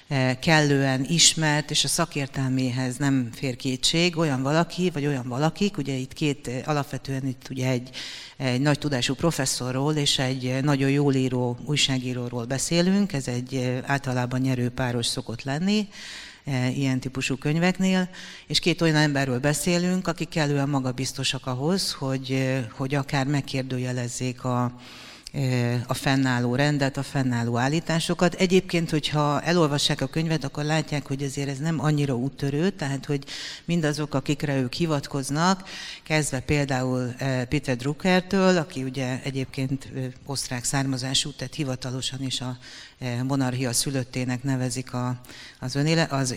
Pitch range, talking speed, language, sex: 130-155 Hz, 125 wpm, Hungarian, female